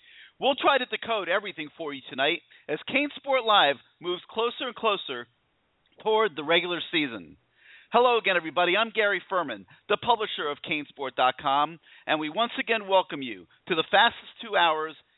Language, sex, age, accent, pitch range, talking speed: English, male, 40-59, American, 160-220 Hz, 160 wpm